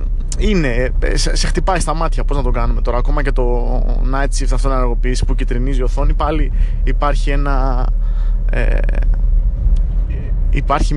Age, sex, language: 20-39, male, Greek